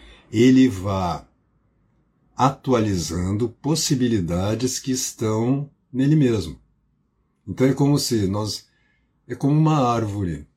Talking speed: 95 wpm